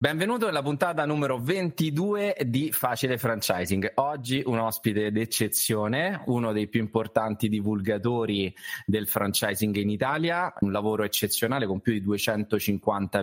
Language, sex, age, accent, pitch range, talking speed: Italian, male, 20-39, native, 100-125 Hz, 125 wpm